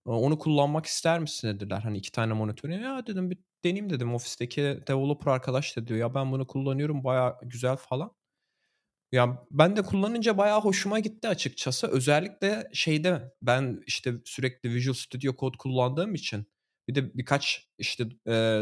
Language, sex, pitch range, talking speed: Turkish, male, 110-145 Hz, 155 wpm